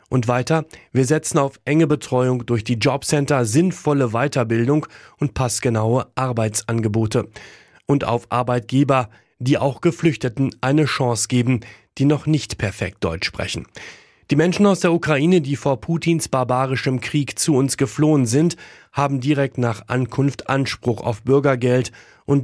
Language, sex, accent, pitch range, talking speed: German, male, German, 120-145 Hz, 140 wpm